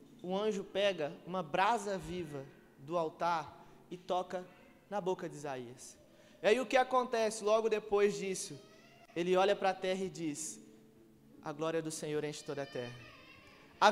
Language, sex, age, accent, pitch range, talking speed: Gujarati, male, 20-39, Brazilian, 185-255 Hz, 165 wpm